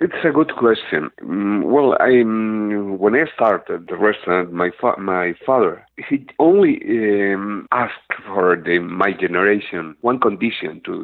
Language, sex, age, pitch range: English, male, 50-69, 90-110 Hz